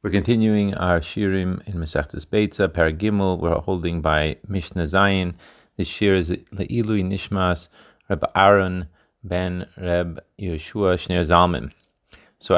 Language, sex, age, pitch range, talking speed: Hebrew, male, 30-49, 85-105 Hz, 130 wpm